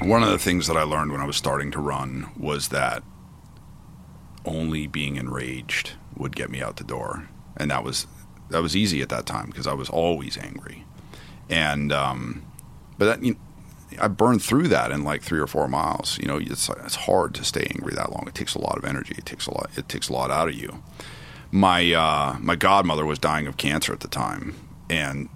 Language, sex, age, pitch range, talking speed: English, male, 40-59, 70-85 Hz, 215 wpm